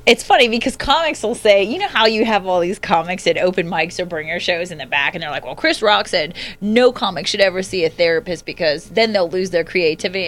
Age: 30-49